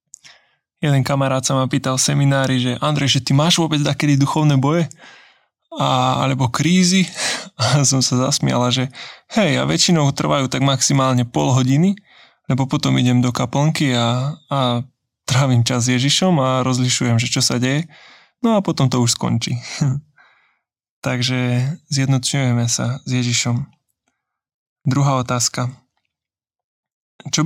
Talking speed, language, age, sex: 135 wpm, Slovak, 20-39, male